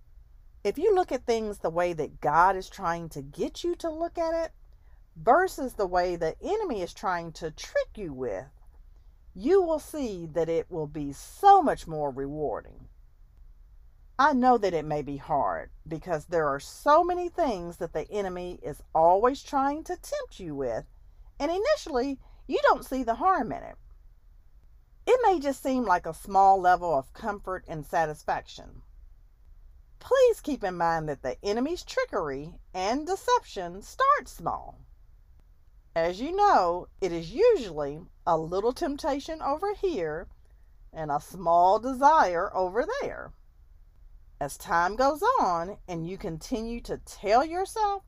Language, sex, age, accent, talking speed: English, female, 40-59, American, 155 wpm